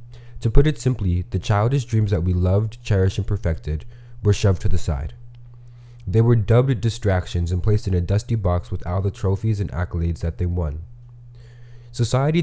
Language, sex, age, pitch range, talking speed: English, male, 20-39, 90-120 Hz, 185 wpm